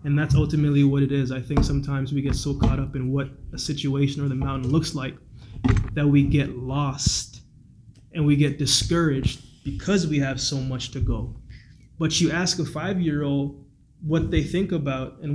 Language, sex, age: English, male, 20-39